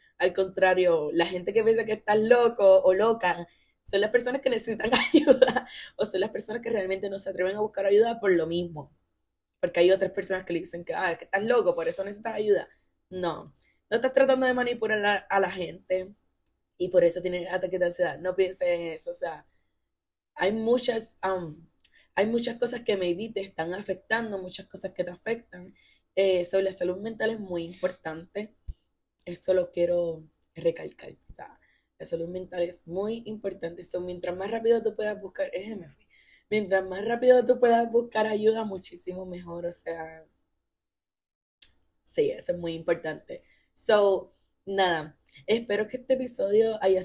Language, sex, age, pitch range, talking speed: Spanish, female, 10-29, 175-225 Hz, 170 wpm